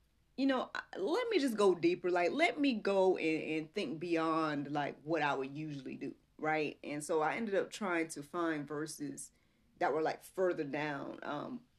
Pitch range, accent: 145-175 Hz, American